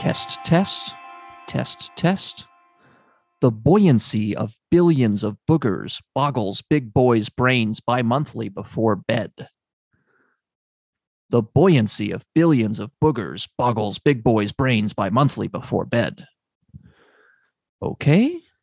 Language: English